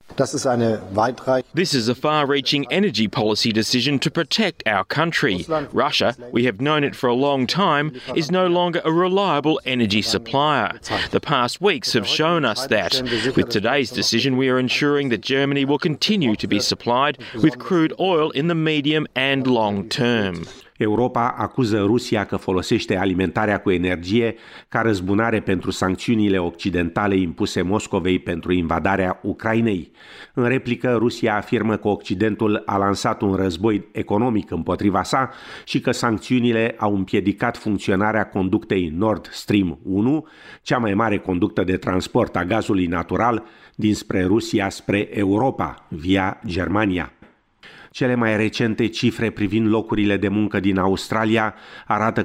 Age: 30-49